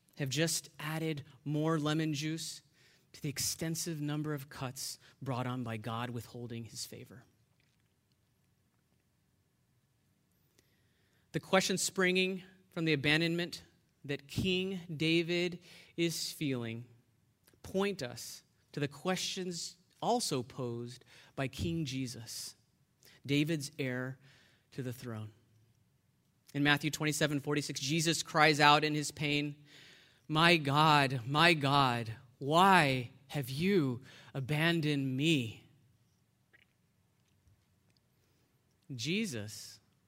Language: English